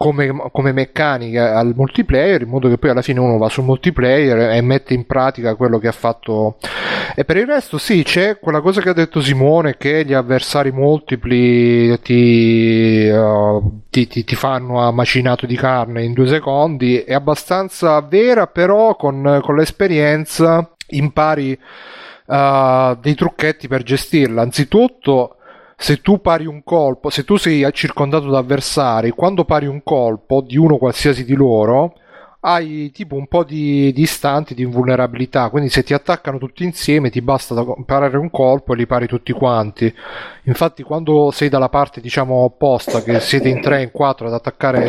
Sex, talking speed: male, 170 wpm